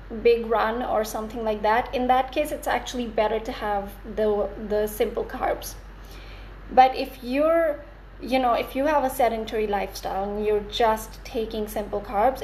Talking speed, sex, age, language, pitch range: 170 wpm, female, 20-39, English, 220-260 Hz